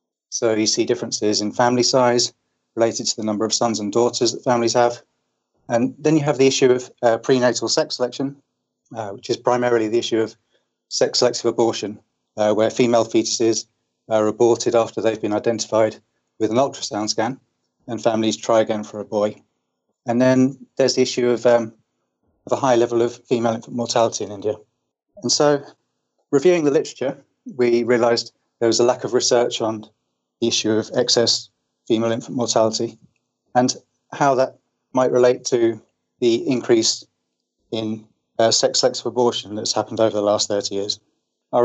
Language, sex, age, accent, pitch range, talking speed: English, male, 30-49, British, 110-125 Hz, 170 wpm